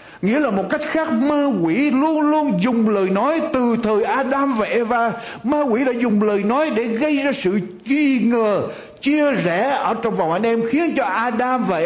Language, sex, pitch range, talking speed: Vietnamese, male, 205-275 Hz, 205 wpm